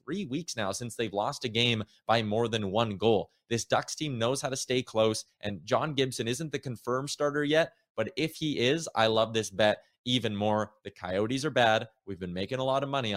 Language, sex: English, male